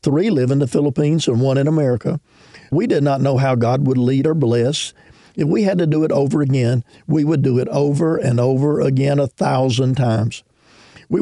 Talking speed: 210 wpm